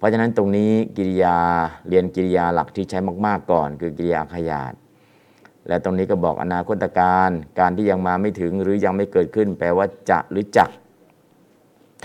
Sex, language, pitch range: male, Thai, 85-100 Hz